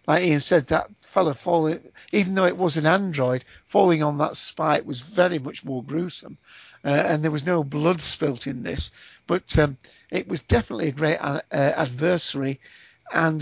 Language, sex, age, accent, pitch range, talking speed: English, male, 50-69, British, 140-165 Hz, 180 wpm